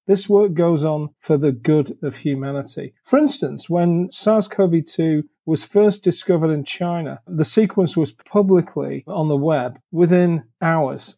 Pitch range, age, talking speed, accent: 150-195 Hz, 40-59, 145 wpm, British